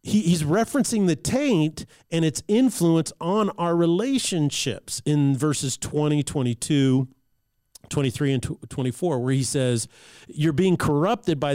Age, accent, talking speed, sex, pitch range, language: 40-59, American, 125 wpm, male, 135-180 Hz, English